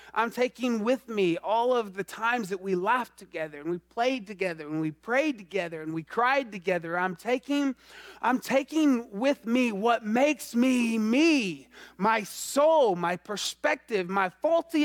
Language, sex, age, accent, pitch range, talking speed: English, male, 30-49, American, 180-280 Hz, 160 wpm